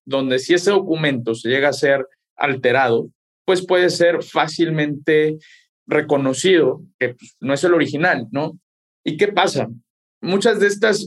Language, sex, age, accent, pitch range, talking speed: Spanish, male, 50-69, Mexican, 130-170 Hz, 140 wpm